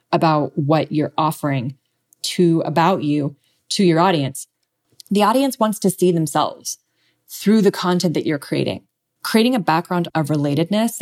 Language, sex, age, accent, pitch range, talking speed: English, female, 20-39, American, 150-175 Hz, 145 wpm